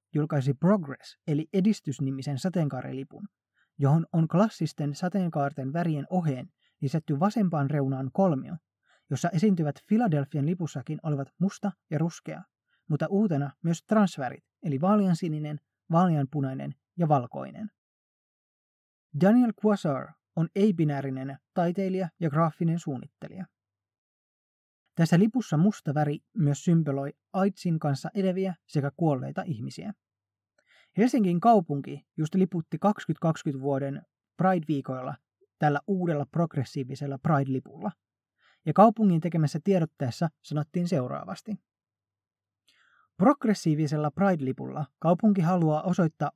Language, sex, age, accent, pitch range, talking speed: Finnish, male, 20-39, native, 145-190 Hz, 95 wpm